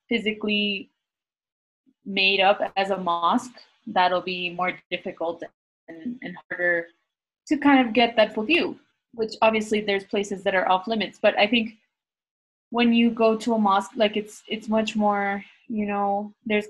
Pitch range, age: 180-220 Hz, 20-39